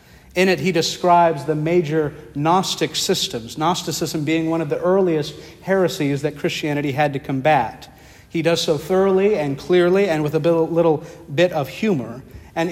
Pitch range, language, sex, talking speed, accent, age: 145-170 Hz, English, male, 160 wpm, American, 50-69